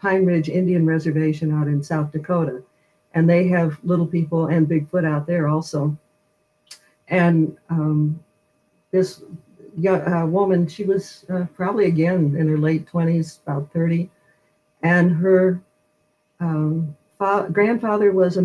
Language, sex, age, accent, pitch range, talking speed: English, female, 60-79, American, 155-185 Hz, 130 wpm